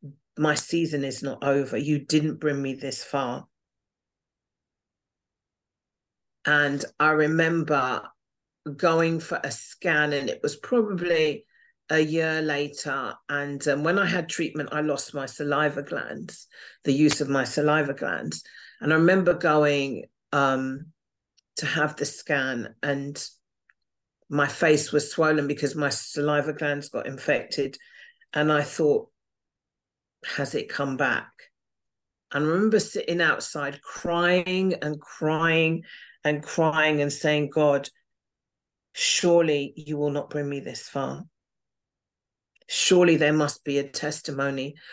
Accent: British